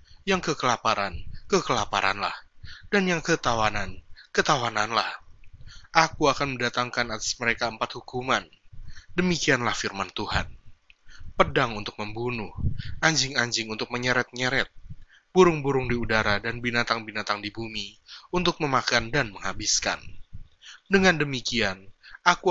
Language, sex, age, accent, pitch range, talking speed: Indonesian, male, 20-39, native, 105-140 Hz, 100 wpm